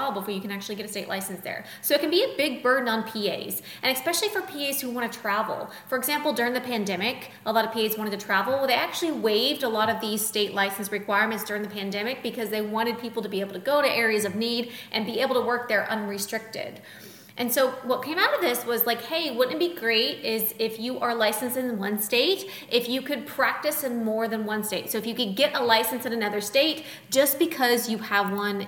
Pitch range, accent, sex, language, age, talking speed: 220-260 Hz, American, female, English, 20-39, 245 wpm